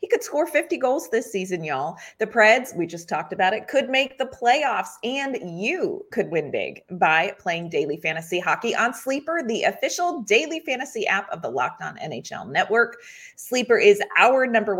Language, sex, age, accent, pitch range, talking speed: English, female, 30-49, American, 180-270 Hz, 185 wpm